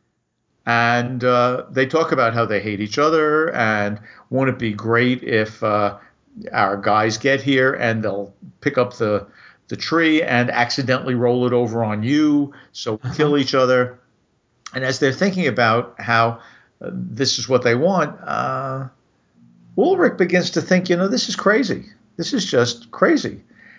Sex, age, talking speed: male, 50-69, 165 wpm